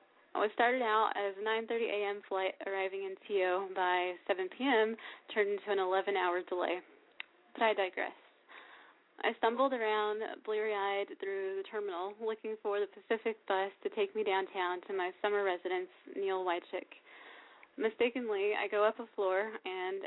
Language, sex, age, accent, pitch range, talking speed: English, female, 20-39, American, 190-225 Hz, 155 wpm